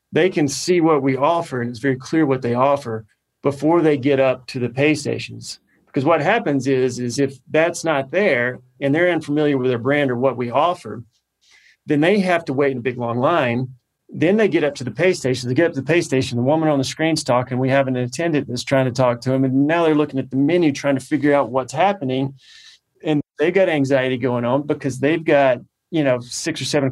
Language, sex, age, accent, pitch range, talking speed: English, male, 30-49, American, 125-145 Hz, 240 wpm